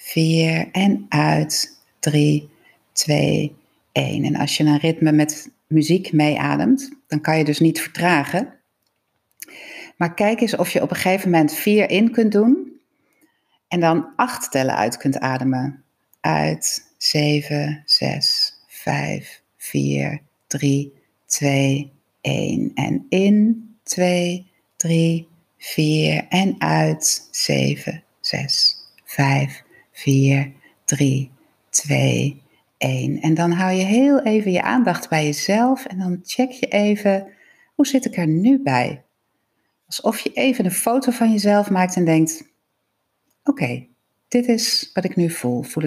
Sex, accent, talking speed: female, Dutch, 135 wpm